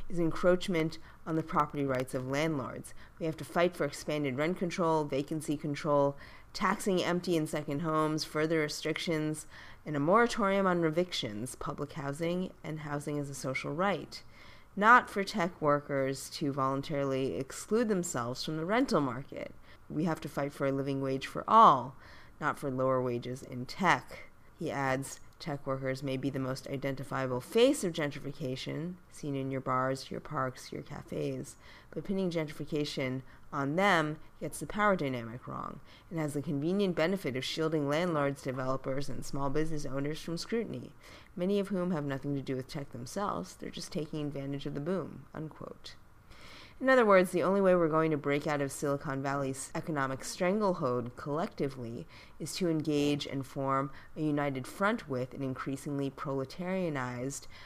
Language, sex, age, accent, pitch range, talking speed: English, female, 30-49, American, 135-165 Hz, 165 wpm